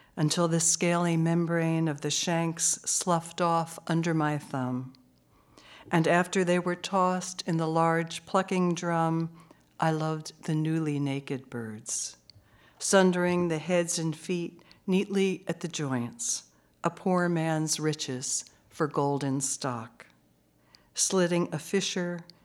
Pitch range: 140-175 Hz